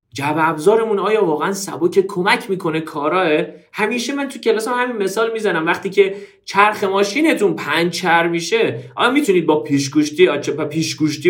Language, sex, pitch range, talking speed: Persian, male, 125-200 Hz, 140 wpm